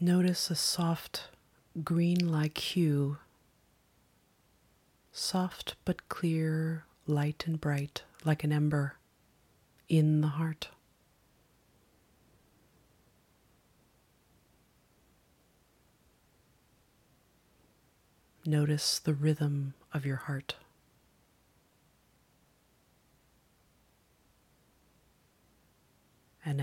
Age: 30-49